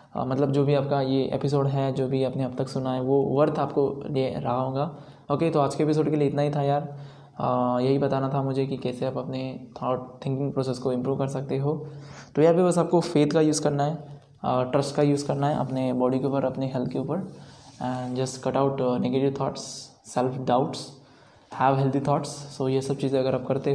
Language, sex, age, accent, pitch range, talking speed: Hindi, male, 20-39, native, 130-140 Hz, 225 wpm